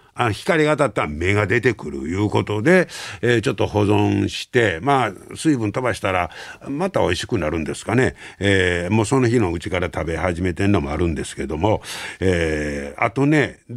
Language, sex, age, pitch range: Japanese, male, 60-79, 85-125 Hz